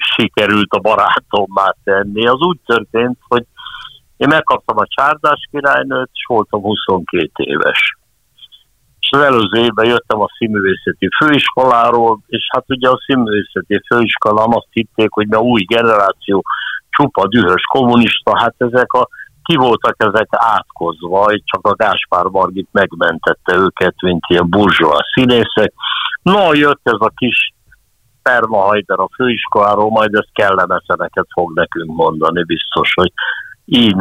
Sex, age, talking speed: male, 60-79, 130 wpm